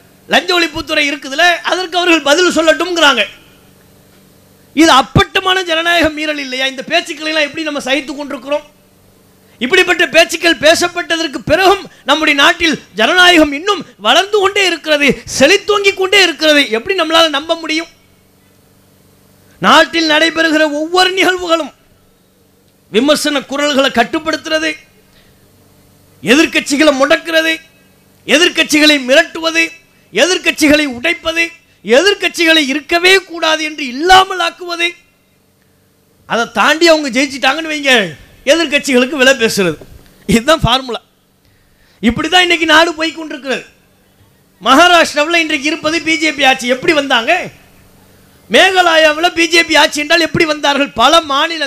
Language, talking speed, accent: English, 95 wpm, Indian